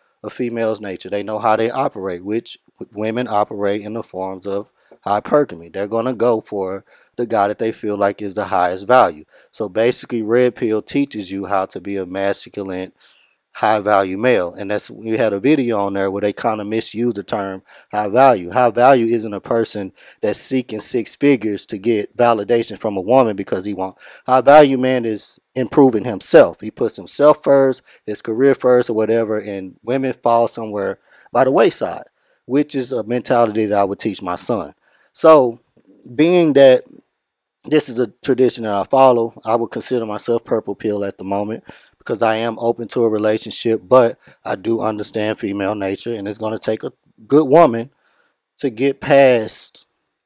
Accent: American